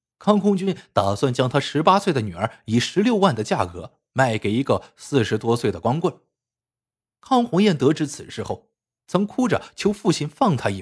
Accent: native